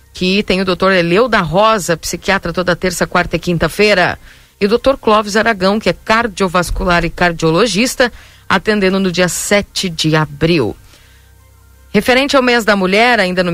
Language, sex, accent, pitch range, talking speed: Portuguese, female, Brazilian, 155-200 Hz, 160 wpm